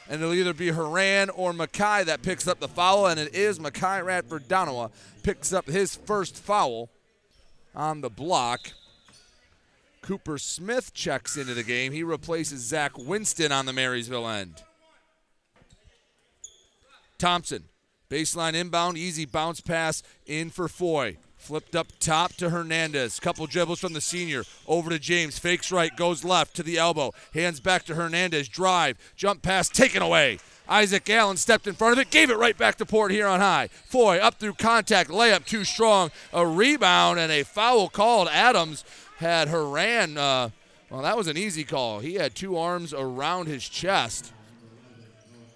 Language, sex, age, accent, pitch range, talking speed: English, male, 40-59, American, 150-195 Hz, 160 wpm